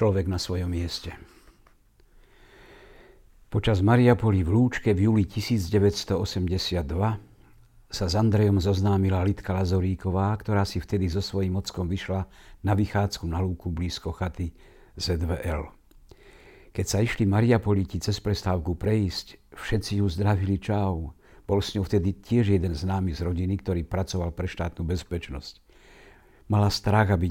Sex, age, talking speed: male, 60-79, 130 wpm